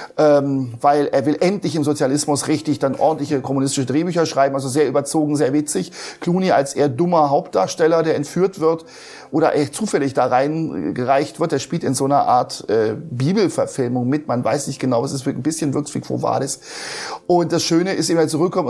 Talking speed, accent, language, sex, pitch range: 195 wpm, German, German, male, 140-170 Hz